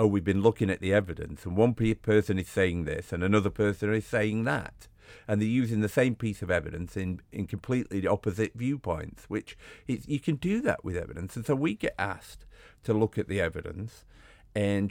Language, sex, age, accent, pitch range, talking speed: English, male, 50-69, British, 85-105 Hz, 200 wpm